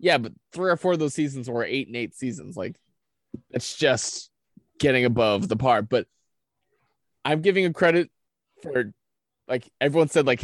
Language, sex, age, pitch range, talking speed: English, male, 20-39, 115-150 Hz, 170 wpm